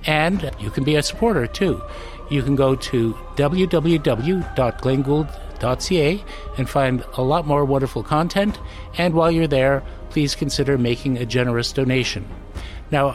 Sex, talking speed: male, 135 wpm